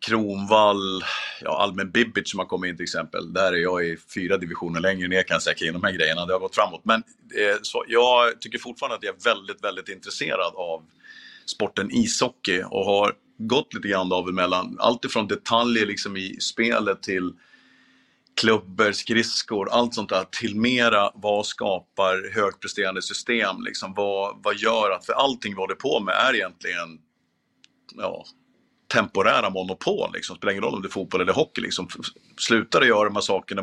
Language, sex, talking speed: Swedish, male, 185 wpm